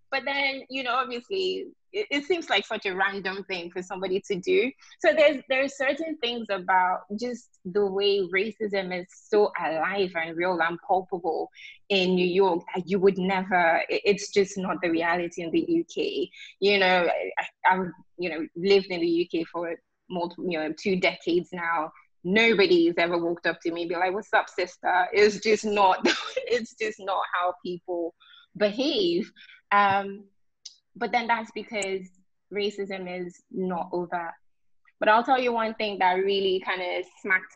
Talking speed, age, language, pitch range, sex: 165 wpm, 20-39, English, 180-235 Hz, female